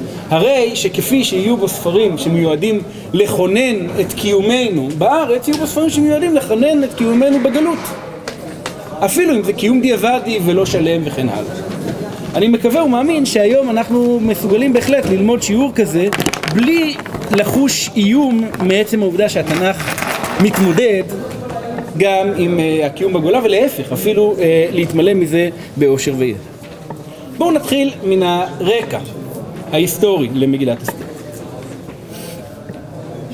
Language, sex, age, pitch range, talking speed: Hebrew, male, 40-59, 175-235 Hz, 110 wpm